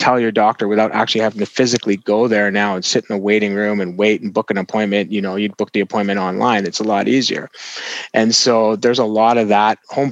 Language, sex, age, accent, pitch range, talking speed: English, male, 20-39, American, 105-115 Hz, 250 wpm